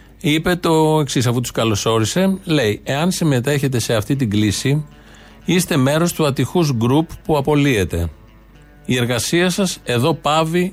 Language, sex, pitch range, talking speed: Greek, male, 120-170 Hz, 140 wpm